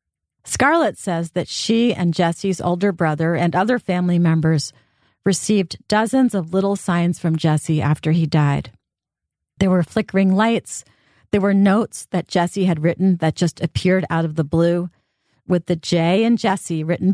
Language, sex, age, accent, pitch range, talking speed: English, female, 40-59, American, 160-195 Hz, 160 wpm